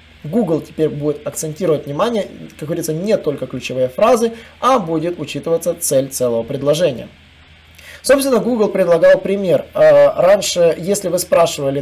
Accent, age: native, 20-39